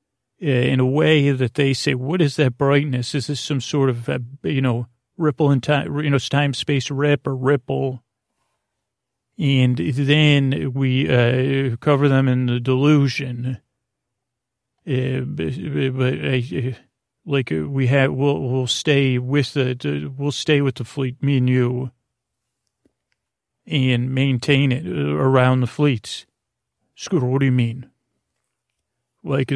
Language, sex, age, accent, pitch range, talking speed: English, male, 40-59, American, 125-140 Hz, 140 wpm